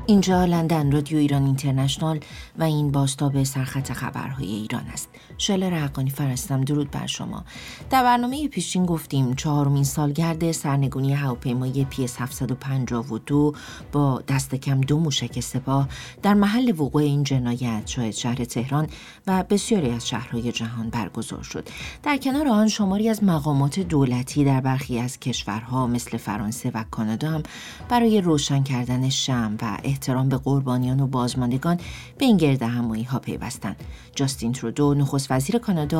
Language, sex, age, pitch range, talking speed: English, female, 40-59, 125-160 Hz, 135 wpm